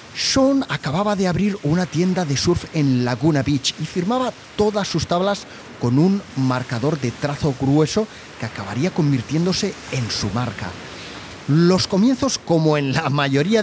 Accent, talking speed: Spanish, 150 wpm